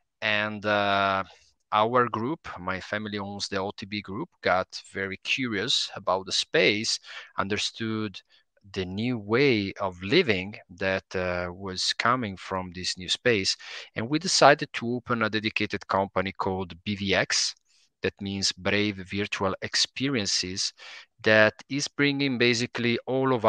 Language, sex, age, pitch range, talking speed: Italian, male, 30-49, 95-115 Hz, 130 wpm